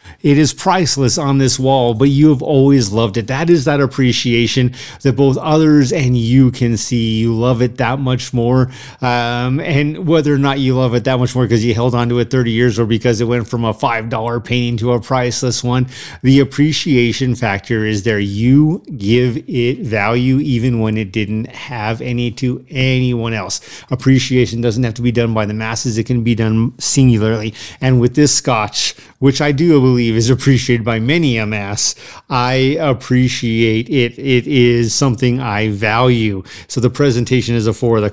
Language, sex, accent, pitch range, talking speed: English, male, American, 115-135 Hz, 190 wpm